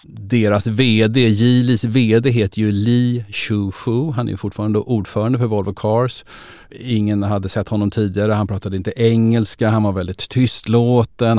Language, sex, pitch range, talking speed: Swedish, male, 100-120 Hz, 150 wpm